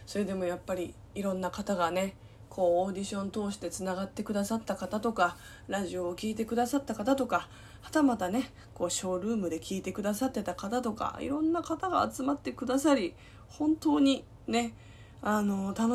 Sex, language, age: female, Japanese, 20-39